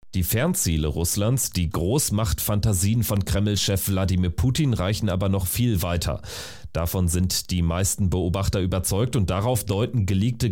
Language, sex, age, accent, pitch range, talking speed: German, male, 30-49, German, 90-110 Hz, 135 wpm